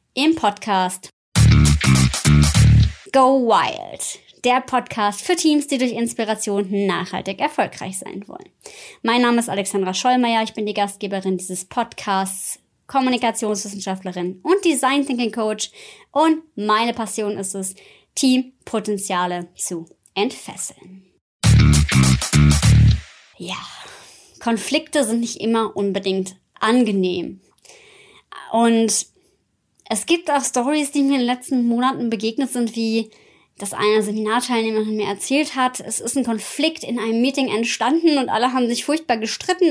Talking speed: 120 wpm